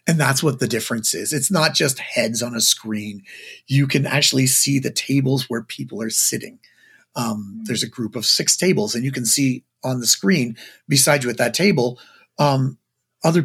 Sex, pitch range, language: male, 120-160 Hz, English